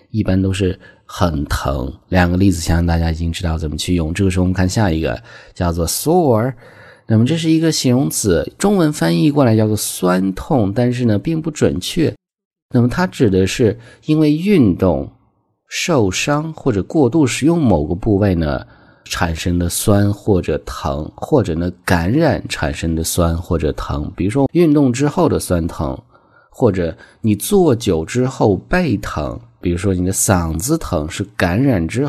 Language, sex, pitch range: Chinese, male, 90-135 Hz